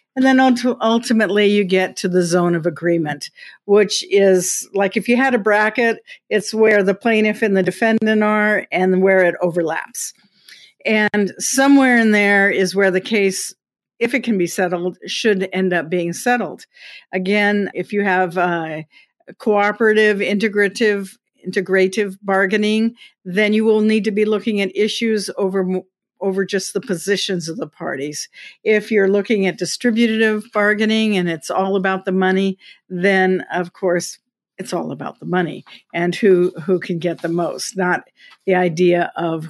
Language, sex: English, female